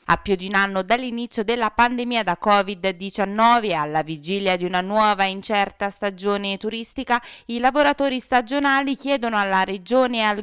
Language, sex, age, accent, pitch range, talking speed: Italian, female, 30-49, native, 180-240 Hz, 150 wpm